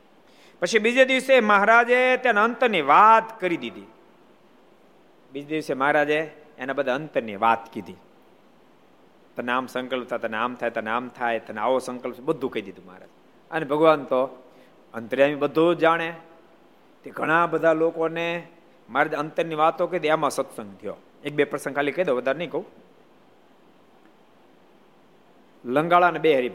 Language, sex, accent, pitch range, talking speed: Gujarati, male, native, 135-195 Hz, 85 wpm